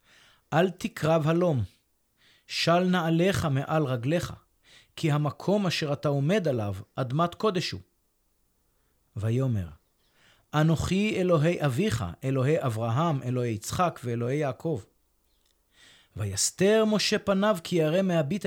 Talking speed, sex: 105 wpm, male